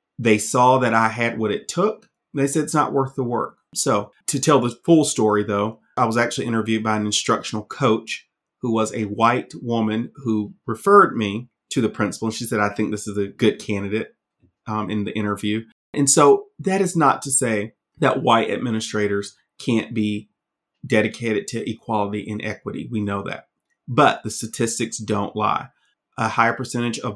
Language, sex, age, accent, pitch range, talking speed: English, male, 30-49, American, 110-135 Hz, 185 wpm